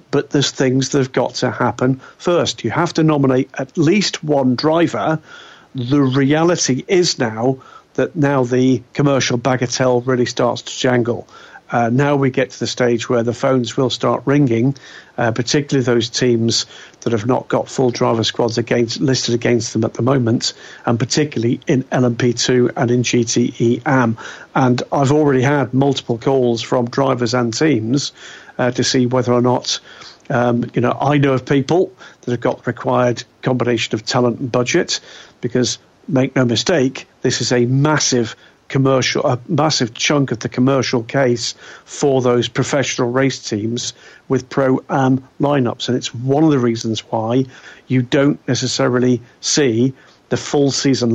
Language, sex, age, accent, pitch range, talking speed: English, male, 50-69, British, 120-140 Hz, 165 wpm